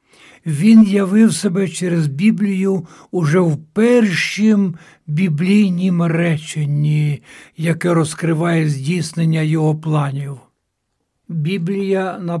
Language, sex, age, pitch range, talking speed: Ukrainian, male, 60-79, 155-190 Hz, 80 wpm